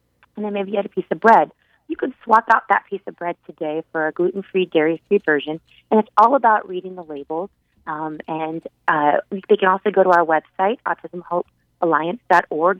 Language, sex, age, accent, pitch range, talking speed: English, female, 30-49, American, 175-220 Hz, 190 wpm